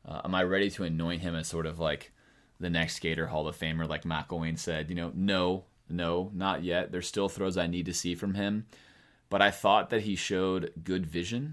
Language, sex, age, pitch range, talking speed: English, male, 30-49, 80-100 Hz, 225 wpm